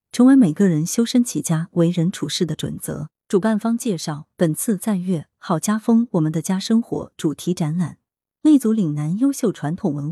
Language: Chinese